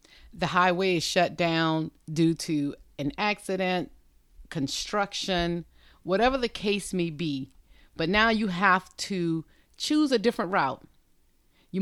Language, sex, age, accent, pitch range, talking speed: English, female, 40-59, American, 155-200 Hz, 125 wpm